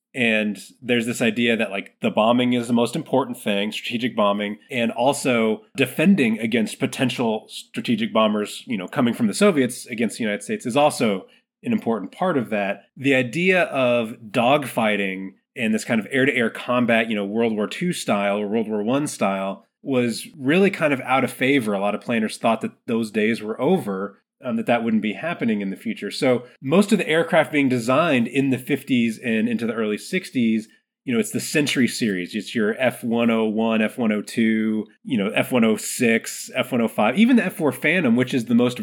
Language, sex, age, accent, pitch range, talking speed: English, male, 30-49, American, 110-175 Hz, 190 wpm